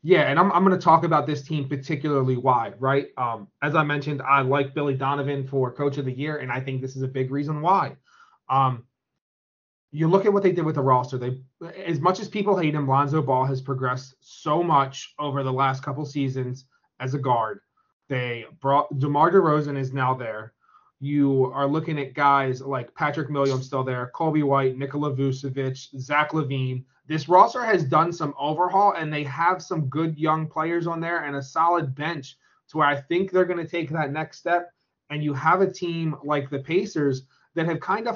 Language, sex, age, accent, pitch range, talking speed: English, male, 20-39, American, 135-165 Hz, 205 wpm